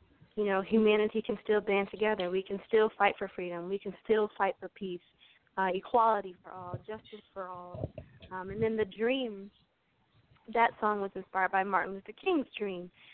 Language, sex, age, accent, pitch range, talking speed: English, female, 20-39, American, 185-215 Hz, 185 wpm